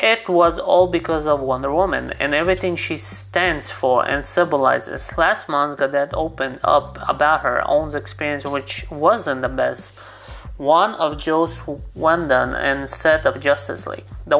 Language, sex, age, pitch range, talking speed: English, male, 30-49, 125-155 Hz, 155 wpm